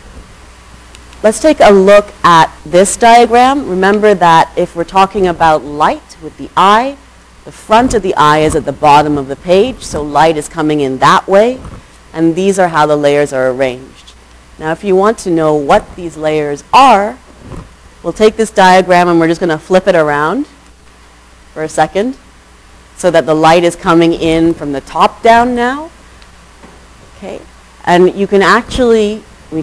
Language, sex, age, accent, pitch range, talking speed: English, female, 40-59, American, 140-195 Hz, 175 wpm